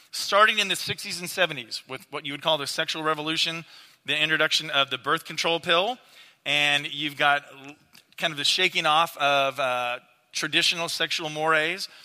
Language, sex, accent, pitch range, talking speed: English, male, American, 145-180 Hz, 170 wpm